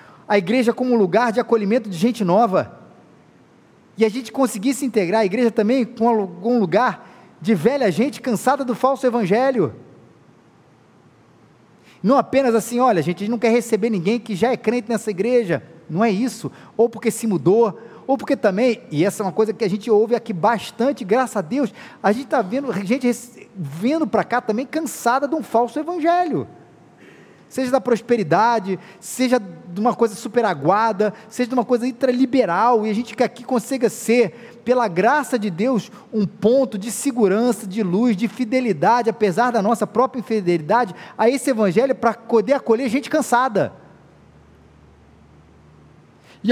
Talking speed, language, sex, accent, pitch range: 170 wpm, Portuguese, male, Brazilian, 205-255 Hz